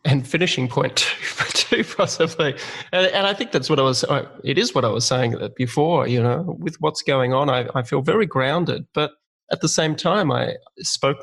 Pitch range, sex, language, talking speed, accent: 125-145 Hz, male, English, 225 wpm, Australian